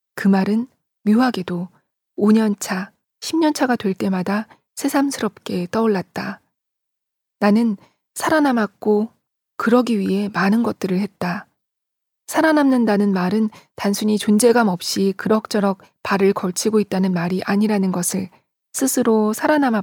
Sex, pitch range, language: female, 195-235 Hz, Korean